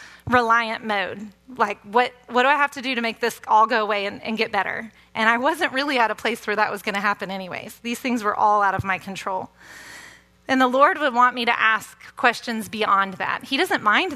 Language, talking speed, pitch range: English, 235 wpm, 200-245 Hz